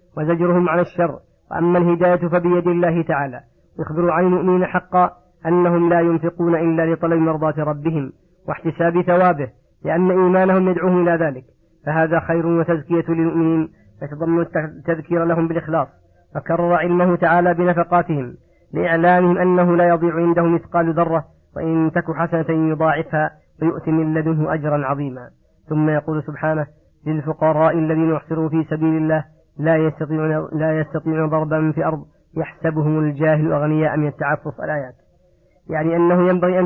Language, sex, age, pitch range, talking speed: Arabic, female, 40-59, 155-175 Hz, 130 wpm